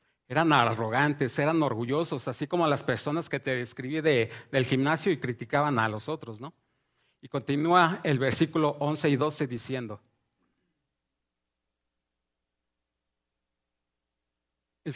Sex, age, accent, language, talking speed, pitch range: male, 40-59, Mexican, English, 115 wpm, 120-160 Hz